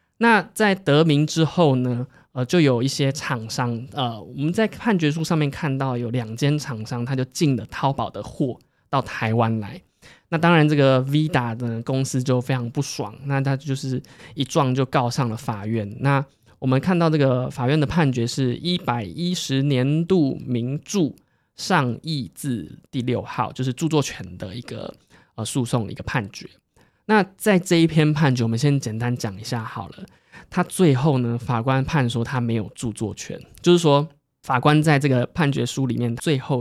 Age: 20-39